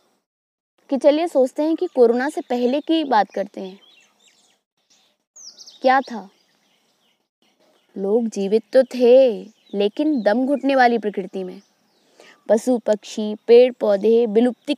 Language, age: Hindi, 20-39